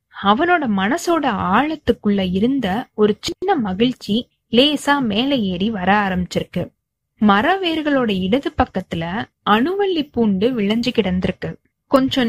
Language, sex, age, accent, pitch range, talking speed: Tamil, female, 20-39, native, 205-275 Hz, 100 wpm